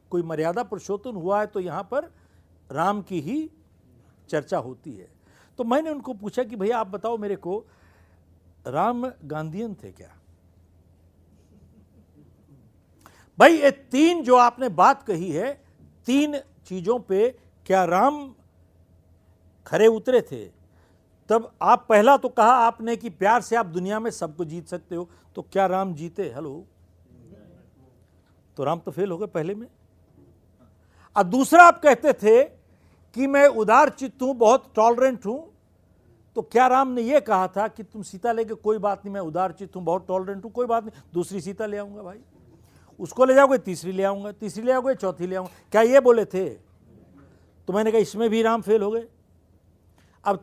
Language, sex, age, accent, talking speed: Hindi, male, 60-79, native, 165 wpm